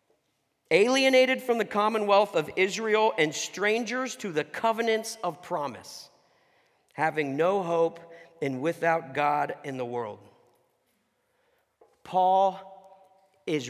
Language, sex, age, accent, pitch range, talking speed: English, male, 50-69, American, 165-220 Hz, 105 wpm